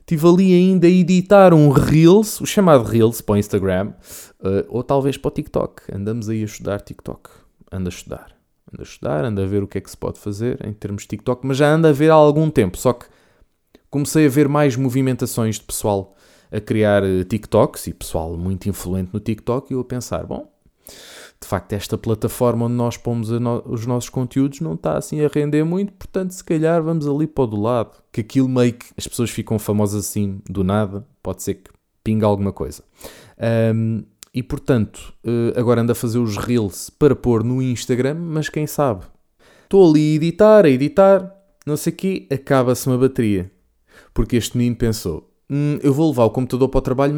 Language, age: Portuguese, 20-39